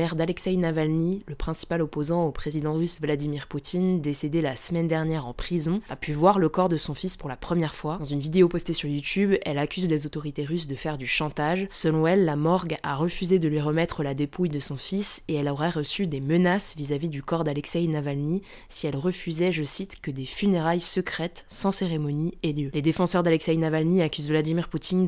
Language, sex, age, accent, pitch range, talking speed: French, female, 20-39, French, 150-180 Hz, 210 wpm